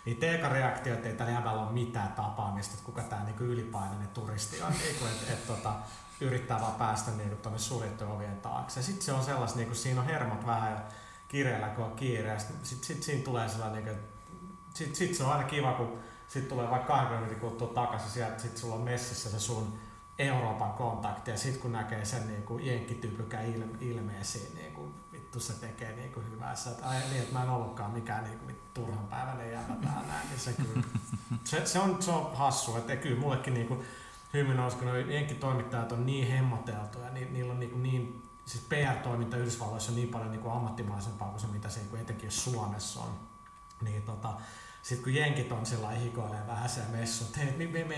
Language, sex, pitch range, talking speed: Finnish, male, 110-130 Hz, 180 wpm